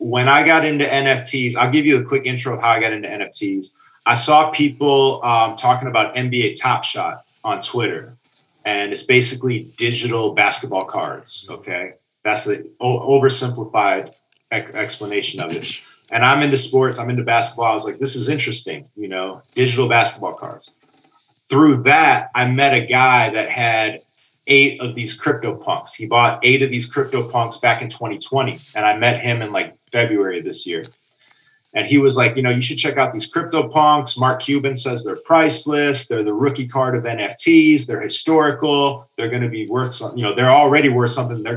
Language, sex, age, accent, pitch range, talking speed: English, male, 30-49, American, 120-140 Hz, 190 wpm